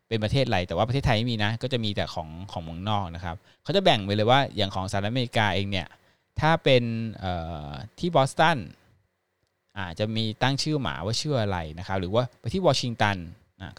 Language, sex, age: Thai, male, 20-39